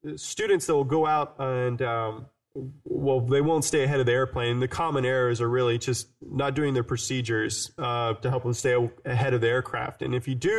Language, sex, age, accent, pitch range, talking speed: English, male, 20-39, American, 120-140 Hz, 215 wpm